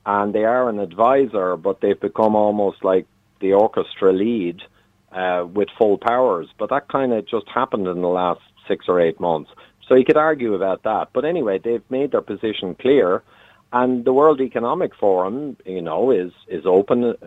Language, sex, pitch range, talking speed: English, male, 95-130 Hz, 185 wpm